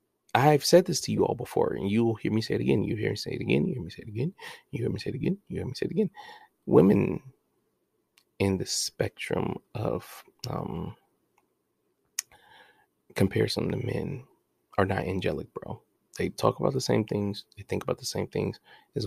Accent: American